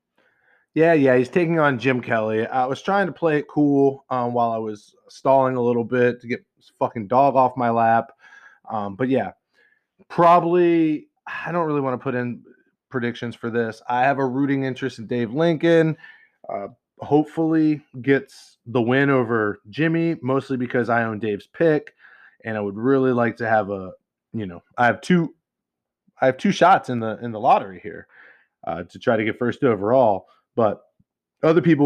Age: 20-39